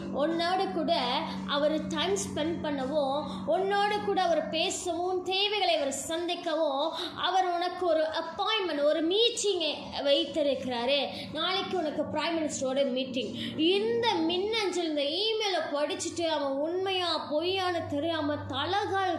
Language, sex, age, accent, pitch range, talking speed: Tamil, female, 20-39, native, 280-350 Hz, 105 wpm